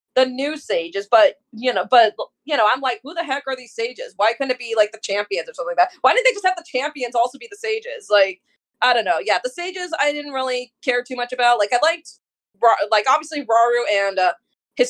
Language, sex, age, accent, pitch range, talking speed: English, female, 20-39, American, 230-315 Hz, 255 wpm